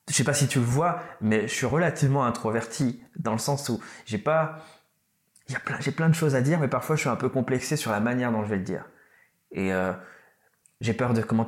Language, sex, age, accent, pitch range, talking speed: French, male, 20-39, French, 110-135 Hz, 235 wpm